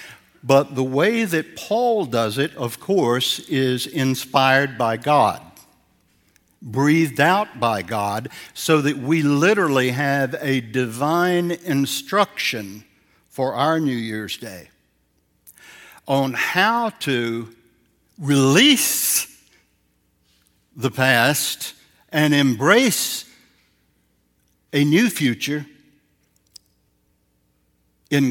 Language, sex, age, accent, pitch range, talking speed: English, male, 60-79, American, 120-170 Hz, 90 wpm